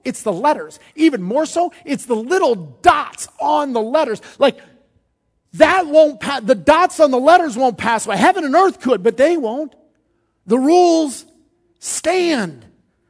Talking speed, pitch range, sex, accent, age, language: 160 wpm, 200-275 Hz, male, American, 40-59, English